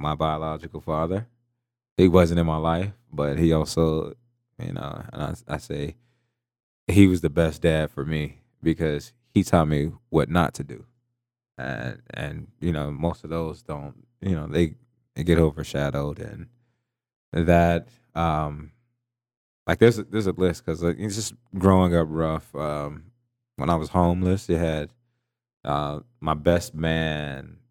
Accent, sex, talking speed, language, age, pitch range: American, male, 155 wpm, English, 20-39, 80-115 Hz